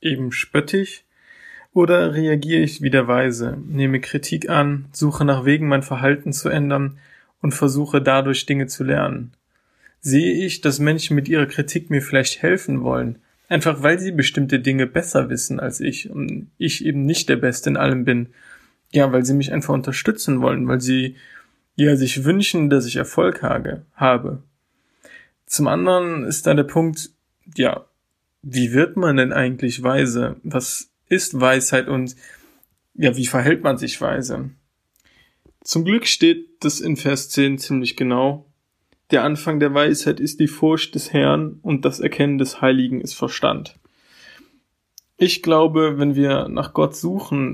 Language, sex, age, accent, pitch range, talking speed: German, male, 20-39, German, 130-155 Hz, 155 wpm